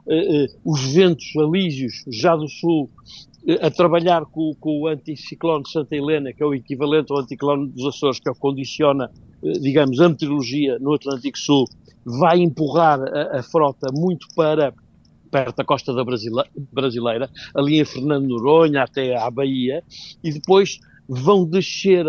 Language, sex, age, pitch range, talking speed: Portuguese, male, 60-79, 140-175 Hz, 170 wpm